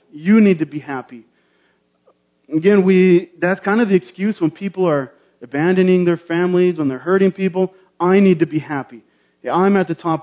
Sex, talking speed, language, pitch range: male, 190 wpm, English, 150-180 Hz